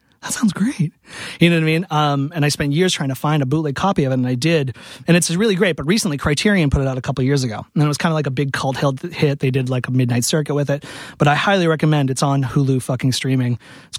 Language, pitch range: English, 130-155 Hz